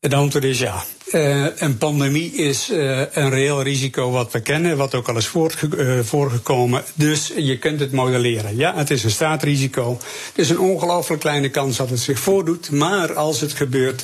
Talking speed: 180 wpm